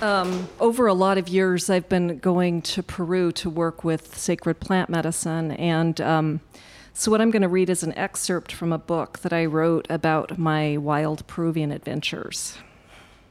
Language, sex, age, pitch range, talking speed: English, female, 40-59, 165-195 Hz, 175 wpm